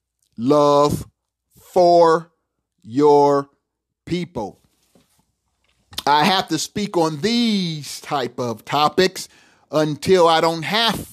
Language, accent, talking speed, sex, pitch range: English, American, 90 wpm, male, 155-195 Hz